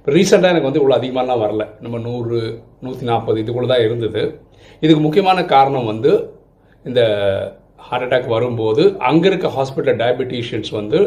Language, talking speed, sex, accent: Tamil, 135 wpm, male, native